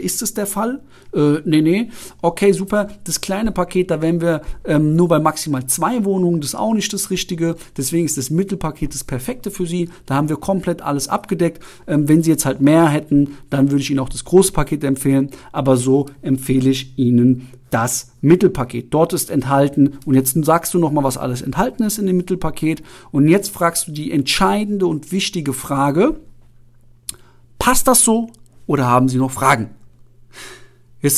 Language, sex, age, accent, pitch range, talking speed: German, male, 40-59, German, 135-180 Hz, 185 wpm